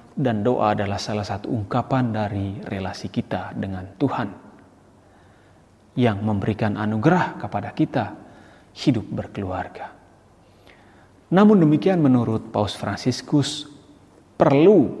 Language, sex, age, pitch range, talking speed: Indonesian, male, 40-59, 100-135 Hz, 95 wpm